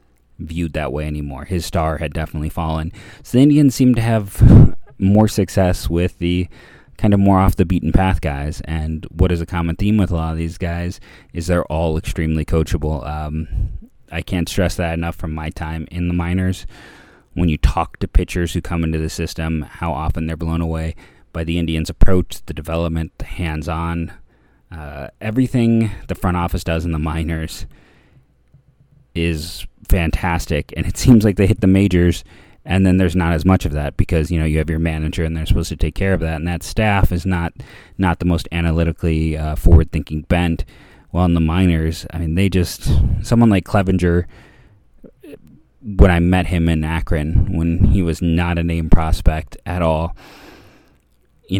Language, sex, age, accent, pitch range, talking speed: English, male, 30-49, American, 80-95 Hz, 185 wpm